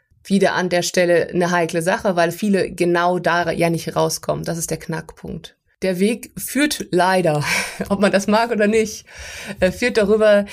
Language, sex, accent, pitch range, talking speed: German, female, German, 170-195 Hz, 170 wpm